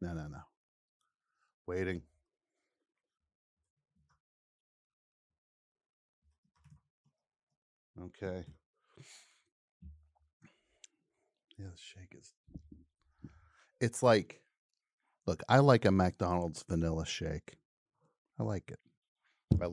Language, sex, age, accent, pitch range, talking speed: English, male, 50-69, American, 85-125 Hz, 65 wpm